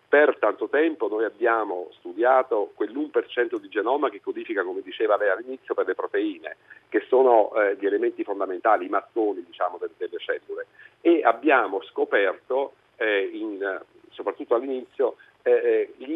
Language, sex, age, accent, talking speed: Italian, male, 50-69, native, 135 wpm